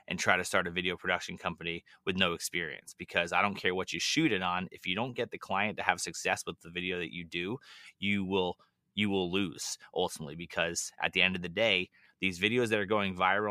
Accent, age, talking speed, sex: American, 30-49, 240 wpm, male